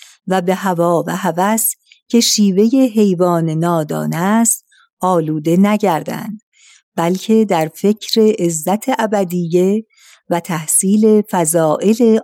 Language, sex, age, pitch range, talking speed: Persian, female, 50-69, 165-205 Hz, 100 wpm